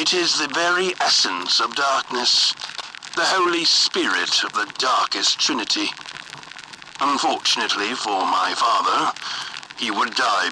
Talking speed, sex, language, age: 120 wpm, male, English, 60-79